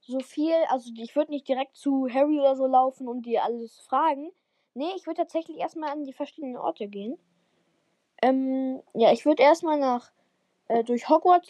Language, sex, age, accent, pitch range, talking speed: German, female, 10-29, German, 235-300 Hz, 190 wpm